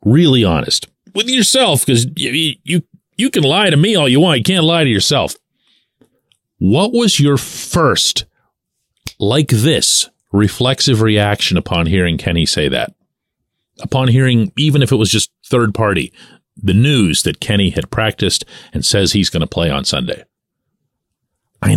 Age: 40-59